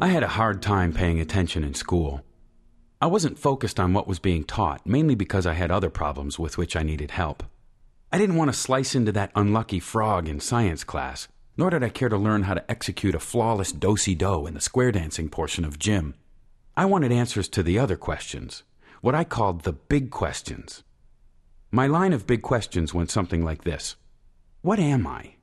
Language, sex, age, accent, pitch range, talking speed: English, male, 40-59, American, 85-120 Hz, 200 wpm